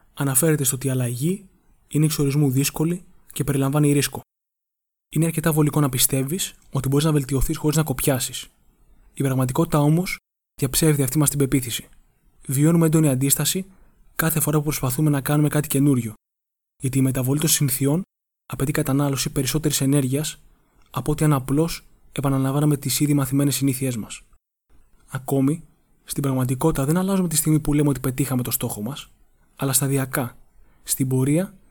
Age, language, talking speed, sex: 20-39, Greek, 150 wpm, male